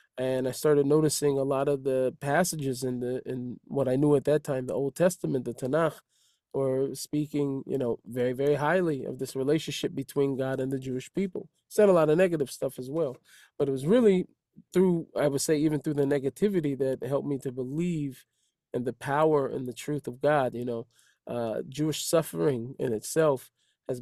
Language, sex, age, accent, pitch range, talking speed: English, male, 20-39, American, 130-150 Hz, 200 wpm